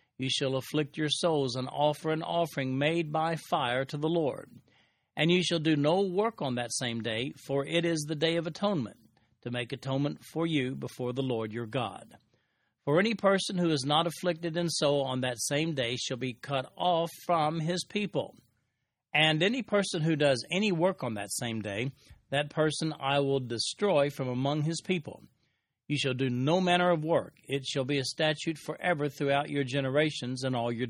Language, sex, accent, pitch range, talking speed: English, male, American, 125-160 Hz, 195 wpm